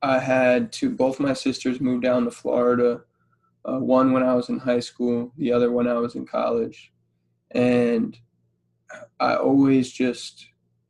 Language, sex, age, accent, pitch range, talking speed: English, male, 20-39, American, 115-135 Hz, 160 wpm